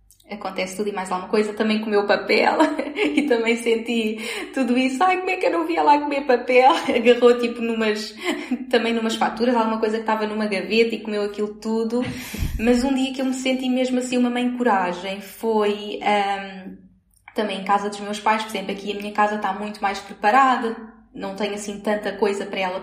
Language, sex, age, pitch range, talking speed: Portuguese, female, 10-29, 210-250 Hz, 200 wpm